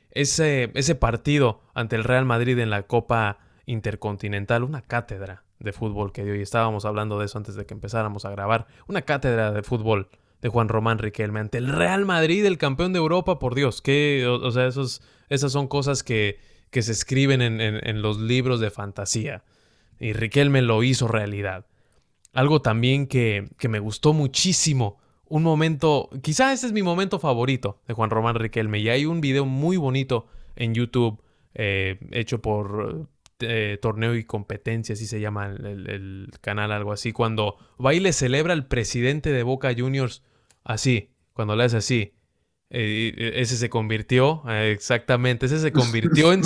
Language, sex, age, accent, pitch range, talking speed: English, male, 20-39, Mexican, 110-140 Hz, 175 wpm